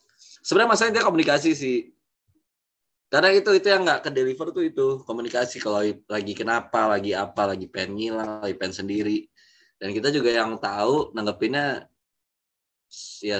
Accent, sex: native, male